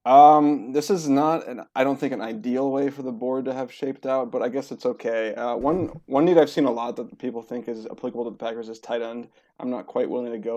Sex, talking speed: male, 275 wpm